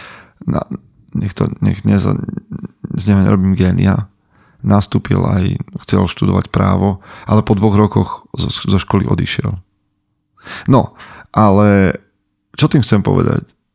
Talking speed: 120 wpm